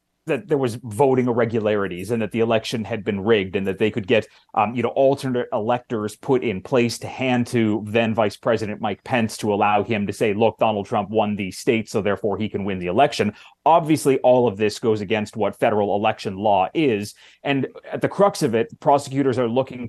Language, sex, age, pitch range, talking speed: English, male, 30-49, 110-130 Hz, 210 wpm